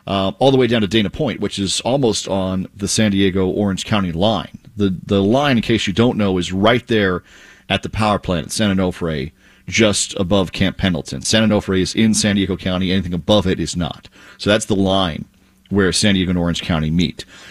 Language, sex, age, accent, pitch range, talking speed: English, male, 40-59, American, 95-110 Hz, 215 wpm